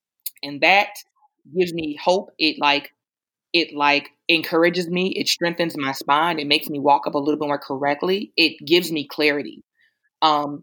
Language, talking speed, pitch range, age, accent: English, 170 wpm, 150-200 Hz, 20-39, American